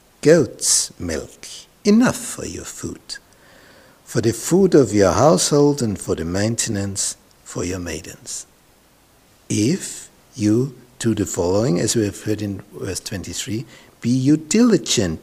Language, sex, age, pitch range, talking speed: English, male, 60-79, 100-125 Hz, 135 wpm